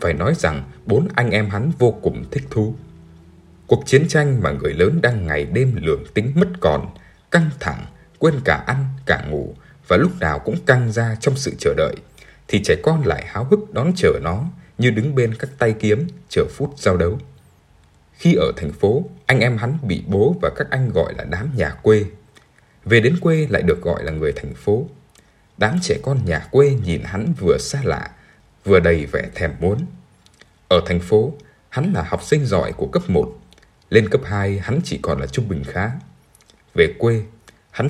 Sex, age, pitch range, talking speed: male, 20-39, 100-145 Hz, 200 wpm